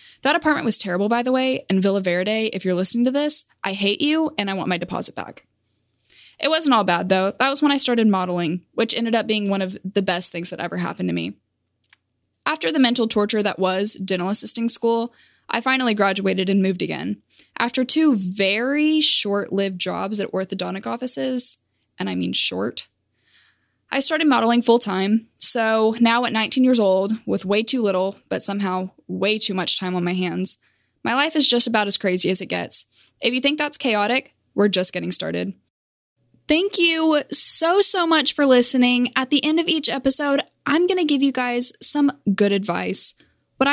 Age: 10-29